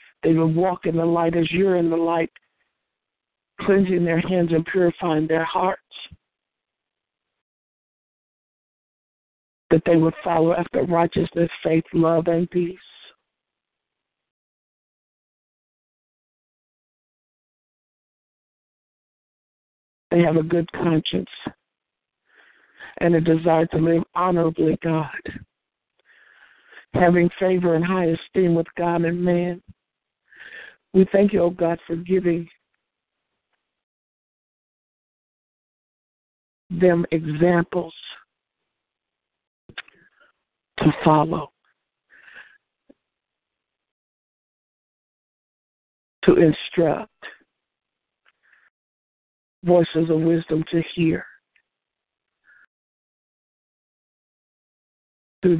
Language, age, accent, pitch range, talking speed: English, 50-69, American, 160-175 Hz, 75 wpm